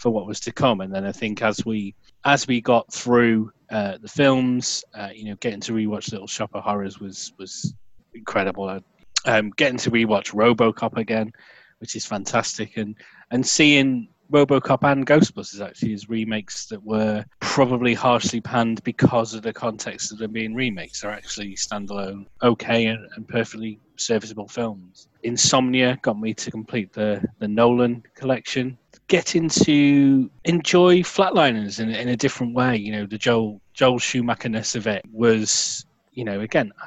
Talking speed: 165 wpm